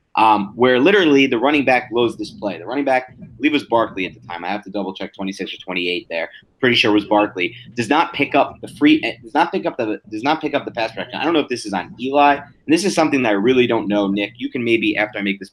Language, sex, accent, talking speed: English, male, American, 305 wpm